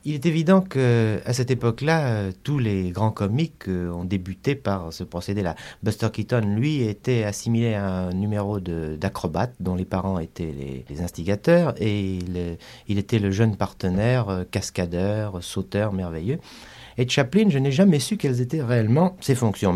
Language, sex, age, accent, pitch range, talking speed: French, male, 40-59, French, 95-140 Hz, 160 wpm